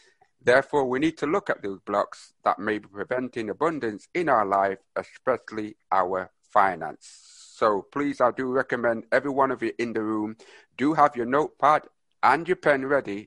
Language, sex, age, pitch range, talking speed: English, male, 60-79, 105-155 Hz, 175 wpm